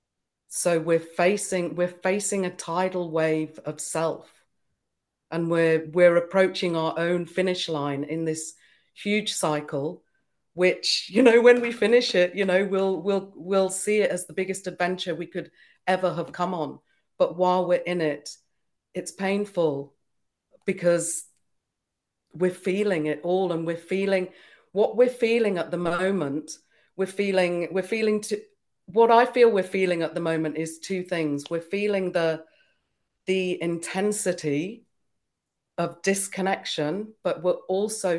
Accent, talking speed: British, 145 wpm